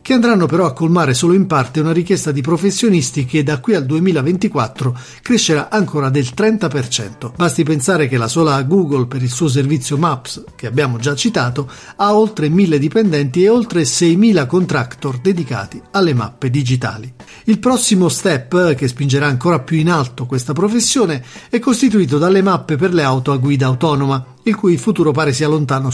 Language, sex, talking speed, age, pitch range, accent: Italian, male, 175 wpm, 50-69, 140-185 Hz, native